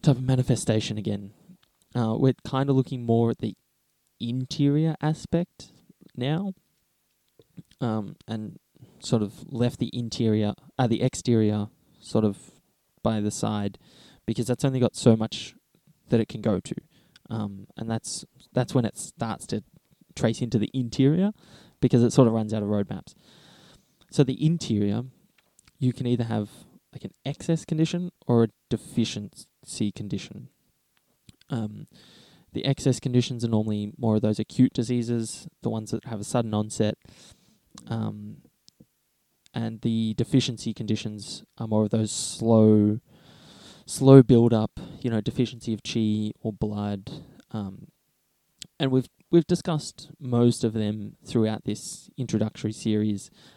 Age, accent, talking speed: 10-29, Australian, 140 wpm